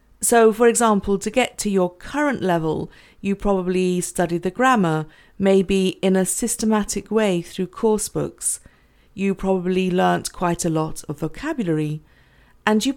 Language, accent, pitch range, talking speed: English, British, 180-220 Hz, 150 wpm